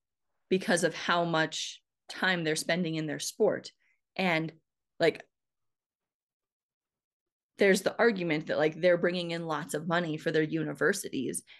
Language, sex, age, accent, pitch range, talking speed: English, female, 20-39, American, 160-195 Hz, 135 wpm